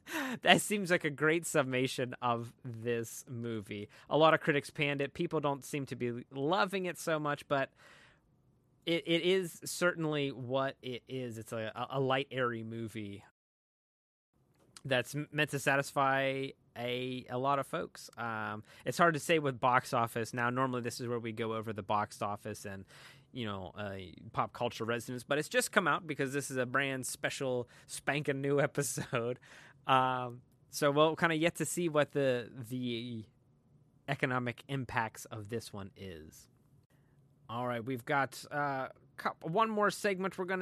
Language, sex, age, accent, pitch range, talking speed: English, male, 20-39, American, 120-150 Hz, 170 wpm